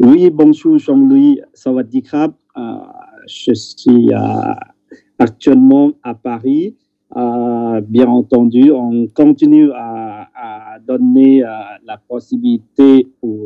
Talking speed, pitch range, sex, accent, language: 115 wpm, 115-140 Hz, male, French, French